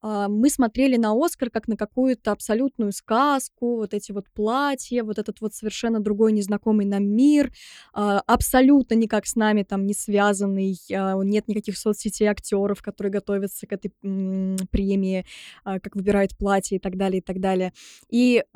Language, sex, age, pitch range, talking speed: Russian, female, 20-39, 205-255 Hz, 150 wpm